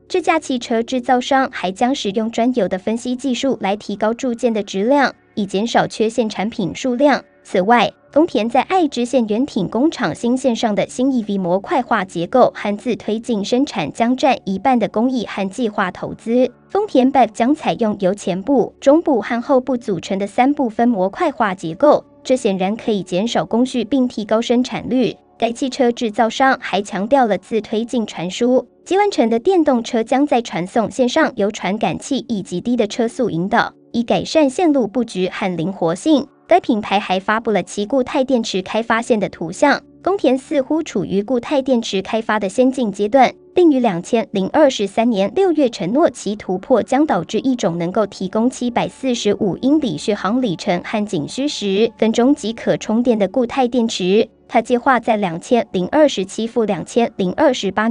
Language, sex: Chinese, male